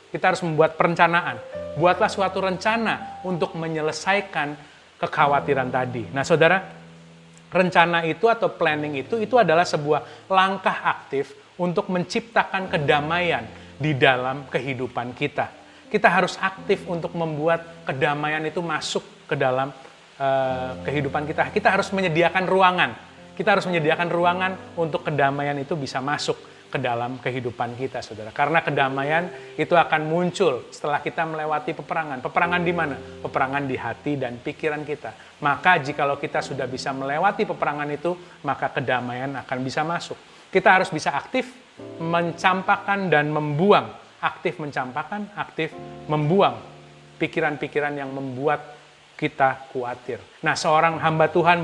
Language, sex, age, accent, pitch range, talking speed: Indonesian, male, 30-49, native, 140-180 Hz, 130 wpm